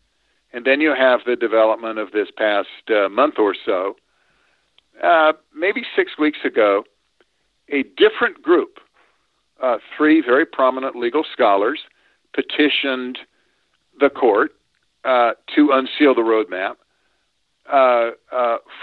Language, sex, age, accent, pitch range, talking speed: English, male, 50-69, American, 125-155 Hz, 120 wpm